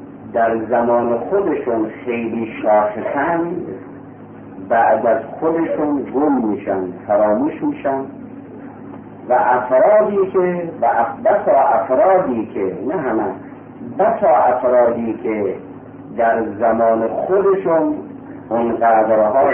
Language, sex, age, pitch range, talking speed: Persian, male, 50-69, 110-165 Hz, 90 wpm